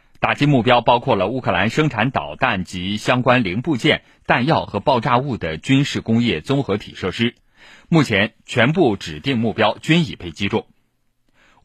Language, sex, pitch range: Chinese, male, 95-135 Hz